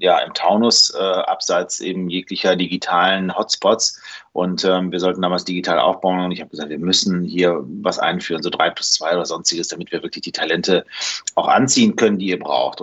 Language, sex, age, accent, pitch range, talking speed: German, male, 30-49, German, 95-110 Hz, 195 wpm